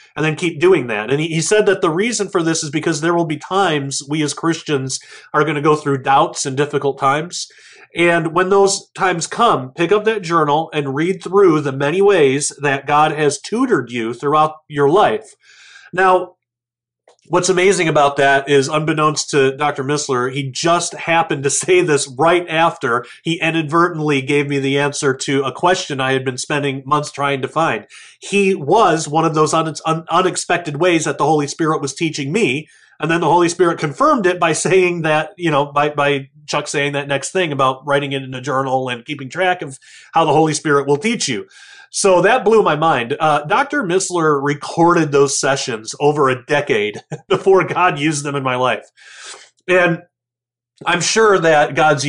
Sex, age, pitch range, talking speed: male, 30-49, 140-170 Hz, 190 wpm